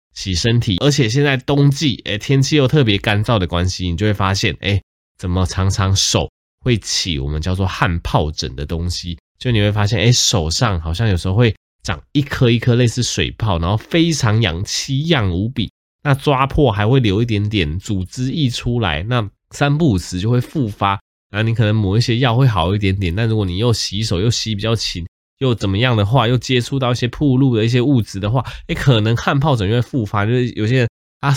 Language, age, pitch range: Chinese, 20-39, 95-125 Hz